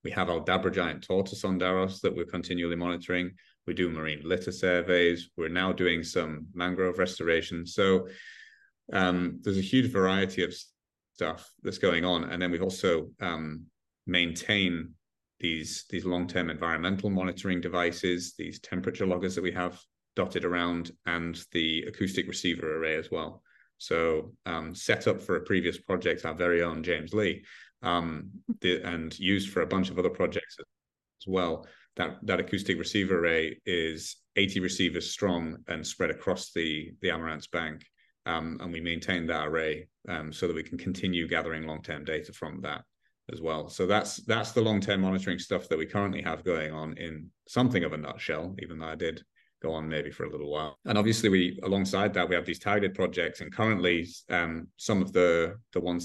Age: 30-49